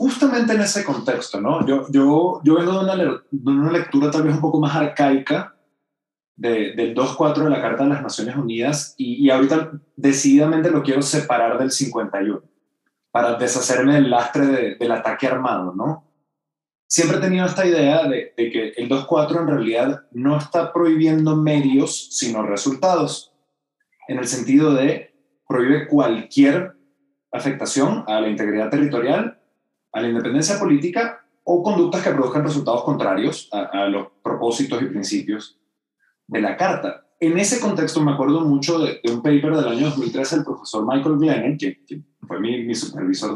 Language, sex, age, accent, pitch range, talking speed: Spanish, male, 30-49, Mexican, 130-165 Hz, 165 wpm